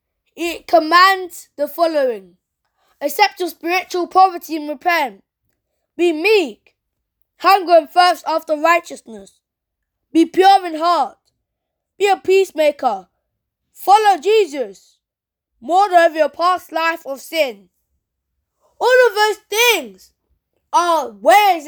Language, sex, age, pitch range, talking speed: English, female, 20-39, 310-420 Hz, 110 wpm